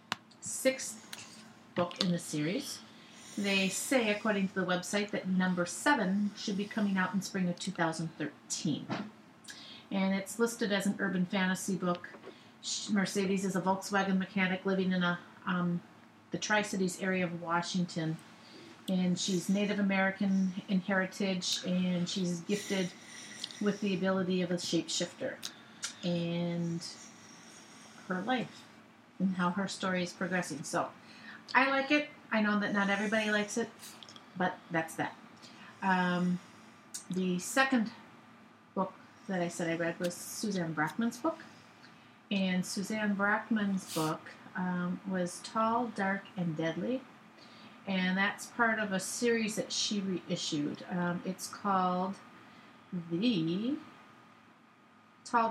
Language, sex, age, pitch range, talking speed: English, female, 40-59, 180-210 Hz, 130 wpm